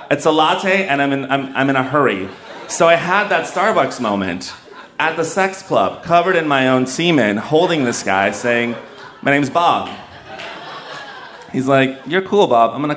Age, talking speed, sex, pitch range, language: 30-49, 175 wpm, male, 115-155 Hz, English